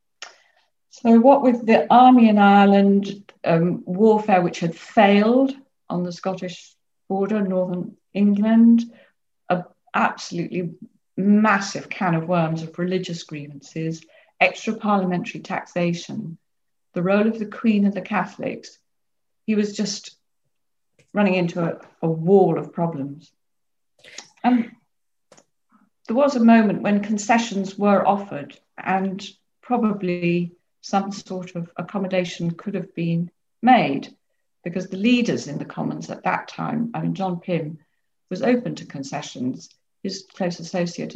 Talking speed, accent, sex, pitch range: 125 wpm, British, female, 170-210 Hz